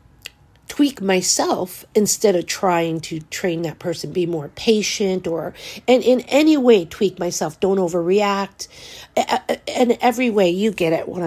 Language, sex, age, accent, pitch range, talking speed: English, female, 50-69, American, 170-205 Hz, 150 wpm